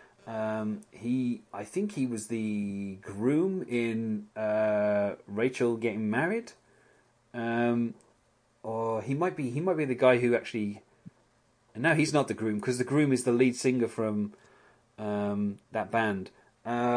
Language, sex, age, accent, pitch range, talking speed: English, male, 30-49, British, 110-130 Hz, 150 wpm